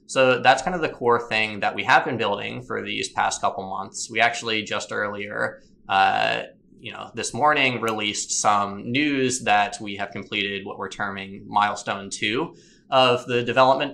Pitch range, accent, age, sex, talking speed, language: 100-125 Hz, American, 20-39, male, 175 wpm, English